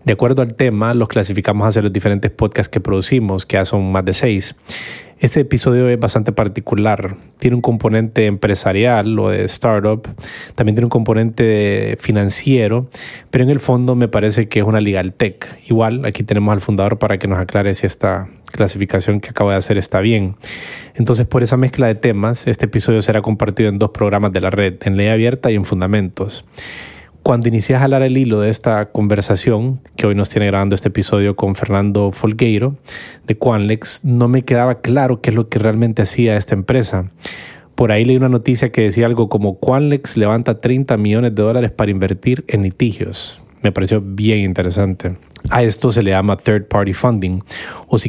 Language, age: Spanish, 20-39